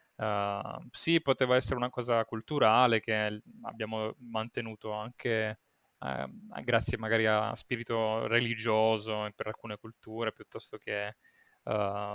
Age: 20-39